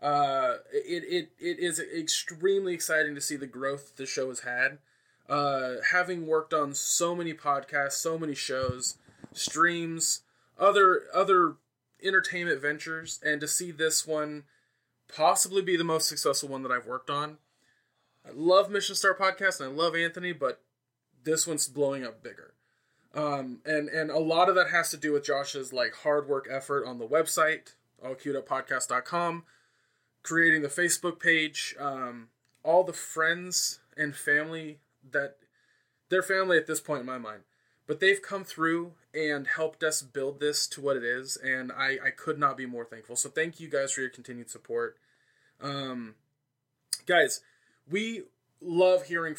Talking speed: 160 wpm